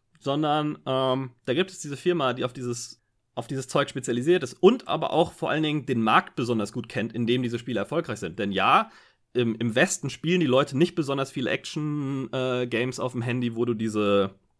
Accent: German